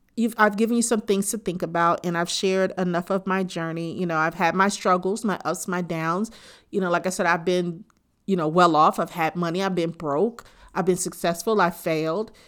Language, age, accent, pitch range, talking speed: English, 40-59, American, 170-205 Hz, 225 wpm